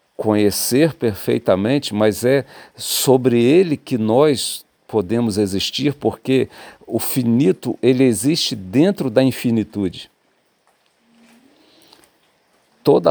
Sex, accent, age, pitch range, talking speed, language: male, Brazilian, 50-69, 105-140 Hz, 85 wpm, Portuguese